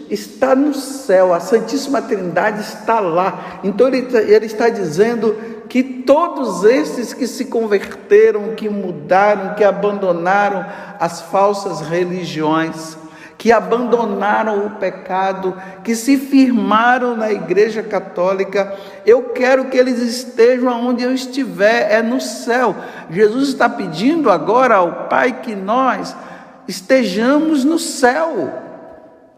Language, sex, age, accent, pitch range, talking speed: Portuguese, male, 60-79, Brazilian, 180-245 Hz, 120 wpm